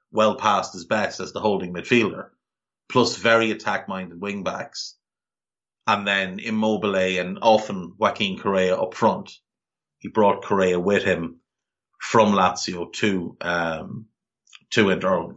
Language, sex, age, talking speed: English, male, 30-49, 135 wpm